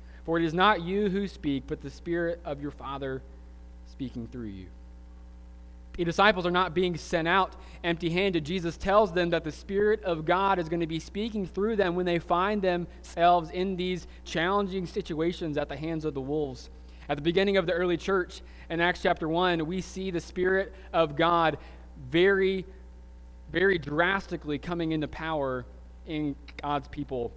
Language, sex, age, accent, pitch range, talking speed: English, male, 20-39, American, 130-175 Hz, 175 wpm